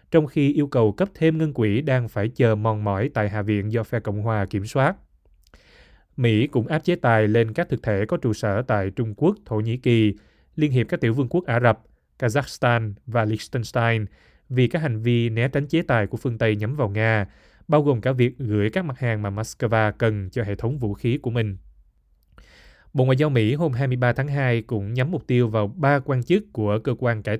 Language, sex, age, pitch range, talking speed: Vietnamese, male, 20-39, 105-130 Hz, 225 wpm